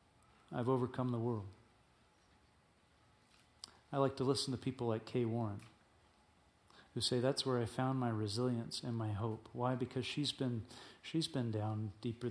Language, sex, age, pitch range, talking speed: English, male, 40-59, 115-190 Hz, 155 wpm